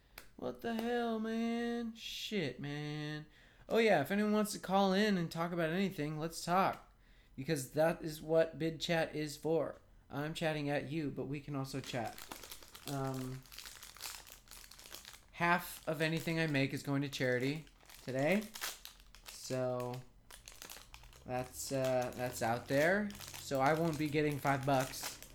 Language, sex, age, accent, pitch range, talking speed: English, male, 20-39, American, 105-150 Hz, 145 wpm